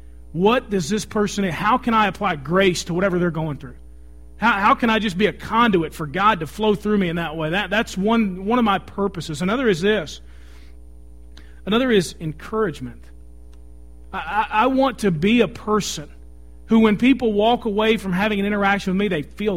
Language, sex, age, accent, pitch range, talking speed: English, male, 40-59, American, 130-210 Hz, 200 wpm